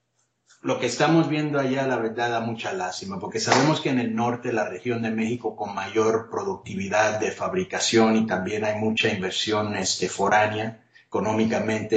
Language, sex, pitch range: English, male, 105-125 Hz